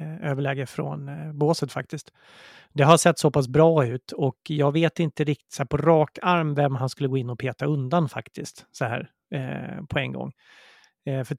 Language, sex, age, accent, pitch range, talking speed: English, male, 30-49, Swedish, 130-150 Hz, 180 wpm